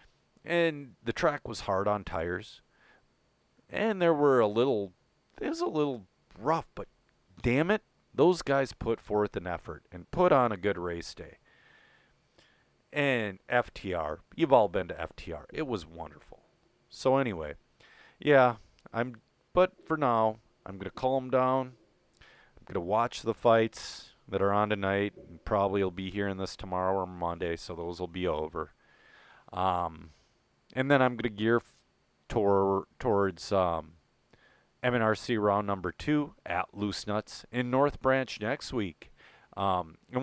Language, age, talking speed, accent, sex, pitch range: English, 40-59, 155 wpm, American, male, 95-120 Hz